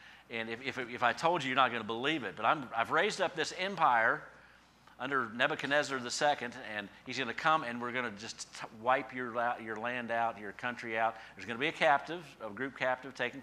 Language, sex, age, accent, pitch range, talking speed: English, male, 50-69, American, 115-155 Hz, 220 wpm